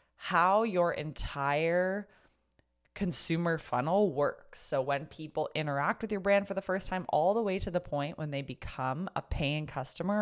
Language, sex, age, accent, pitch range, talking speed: English, female, 20-39, American, 145-195 Hz, 170 wpm